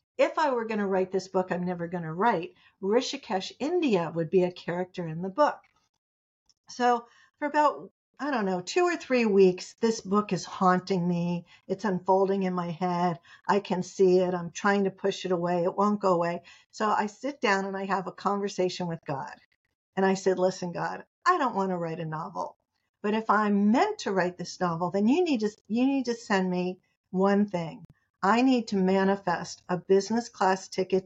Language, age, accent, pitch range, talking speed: English, 50-69, American, 180-240 Hz, 205 wpm